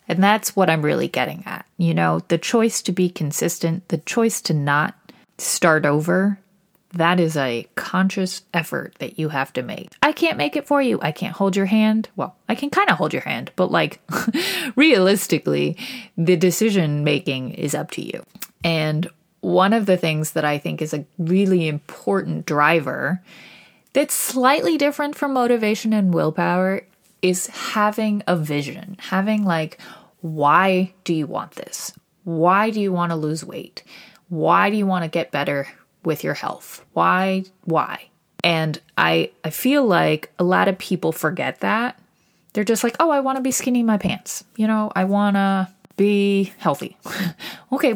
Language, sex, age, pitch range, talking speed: English, female, 30-49, 160-205 Hz, 175 wpm